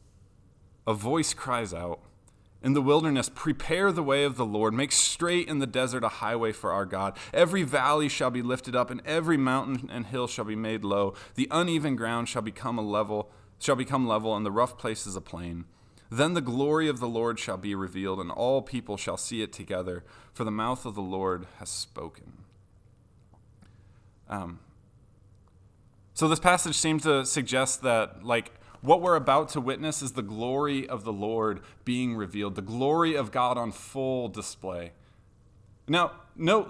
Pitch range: 105-140 Hz